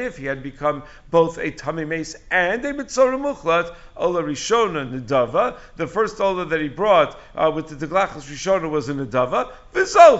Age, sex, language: 50-69, male, English